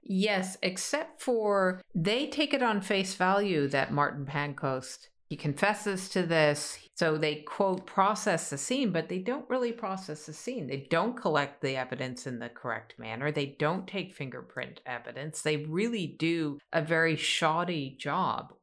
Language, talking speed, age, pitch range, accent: English, 160 wpm, 50-69, 145-195 Hz, American